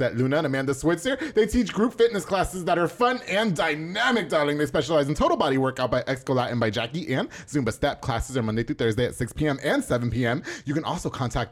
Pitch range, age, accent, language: 125-170 Hz, 30-49, American, English